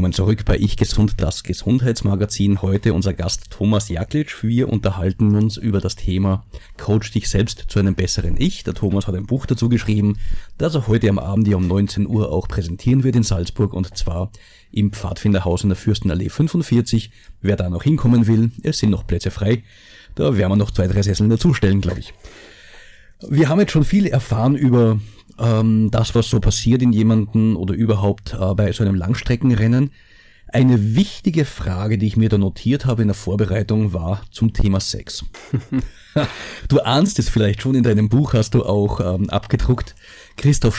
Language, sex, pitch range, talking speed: German, male, 100-125 Hz, 180 wpm